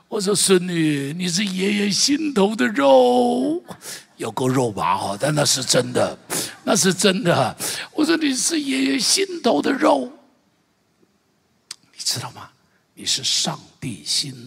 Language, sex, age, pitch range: Chinese, male, 60-79, 150-215 Hz